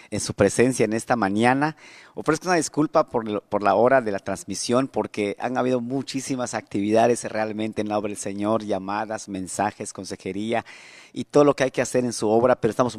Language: Spanish